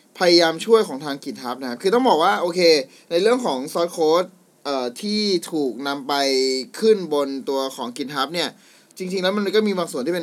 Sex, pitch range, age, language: male, 140-185 Hz, 20-39, Thai